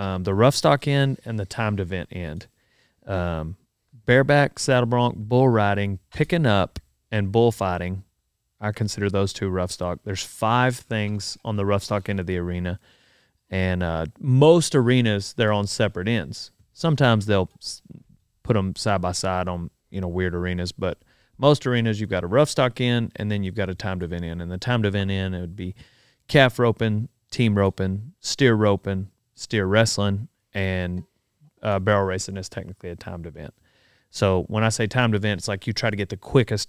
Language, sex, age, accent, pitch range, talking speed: English, male, 30-49, American, 95-115 Hz, 185 wpm